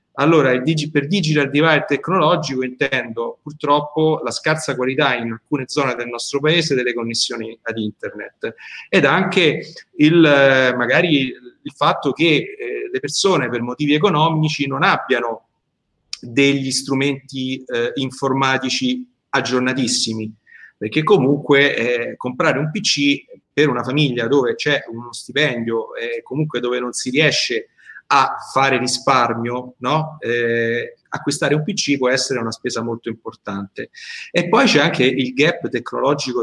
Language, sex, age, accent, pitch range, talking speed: Italian, male, 30-49, native, 120-150 Hz, 135 wpm